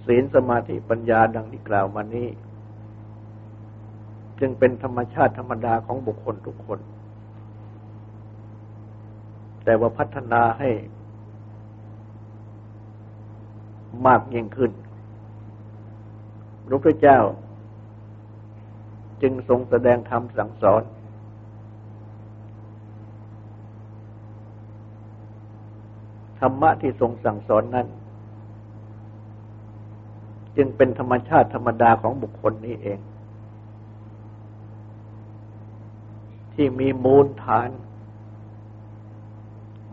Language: Thai